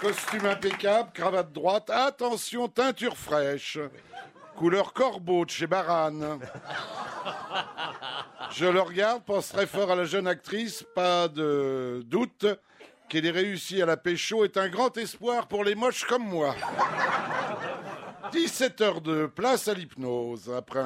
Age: 60-79